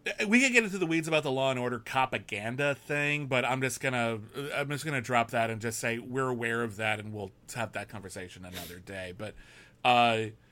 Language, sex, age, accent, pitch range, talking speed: English, male, 30-49, American, 115-145 Hz, 215 wpm